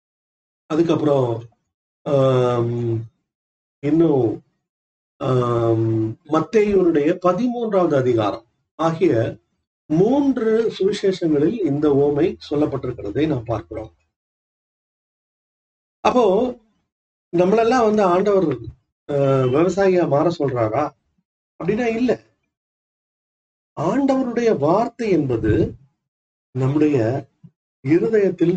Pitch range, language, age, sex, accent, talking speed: 125-190 Hz, Tamil, 40-59, male, native, 65 wpm